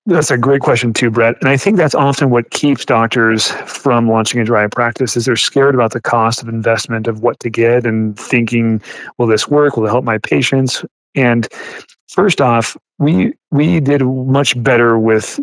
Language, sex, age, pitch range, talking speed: English, male, 40-59, 115-130 Hz, 195 wpm